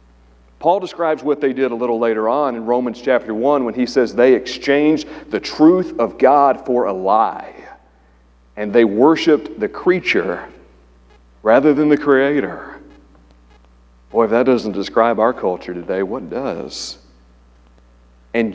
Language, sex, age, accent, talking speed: English, male, 40-59, American, 145 wpm